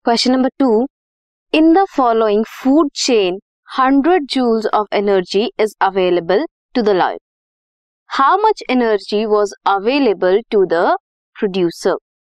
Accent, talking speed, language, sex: native, 120 wpm, Hindi, female